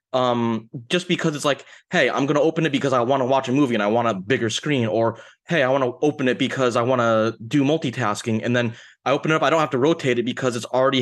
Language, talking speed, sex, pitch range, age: English, 280 wpm, male, 120-150 Hz, 20-39